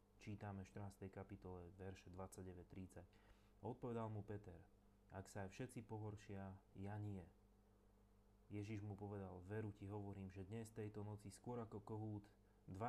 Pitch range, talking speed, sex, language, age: 95-105 Hz, 145 wpm, male, Slovak, 30-49